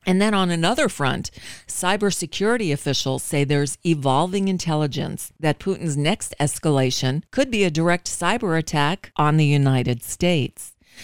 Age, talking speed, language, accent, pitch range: 40-59, 135 wpm, English, American, 145-180 Hz